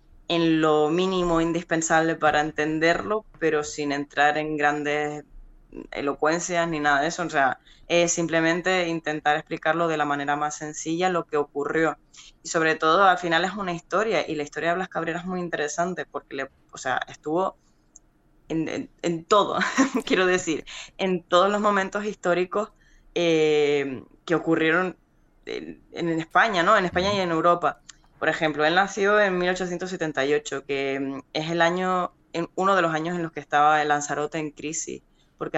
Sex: female